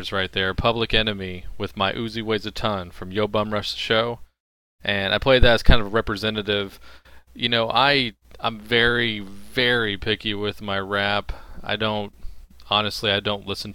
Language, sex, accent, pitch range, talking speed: English, male, American, 100-115 Hz, 180 wpm